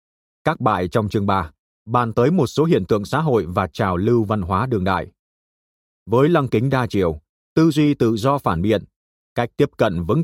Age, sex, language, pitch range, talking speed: 30-49, male, Vietnamese, 90-135 Hz, 205 wpm